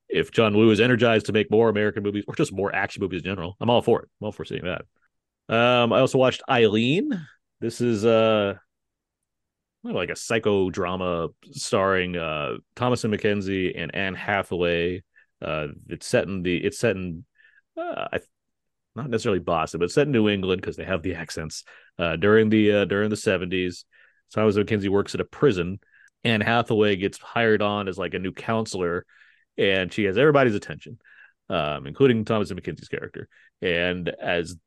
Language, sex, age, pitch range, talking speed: English, male, 30-49, 95-120 Hz, 185 wpm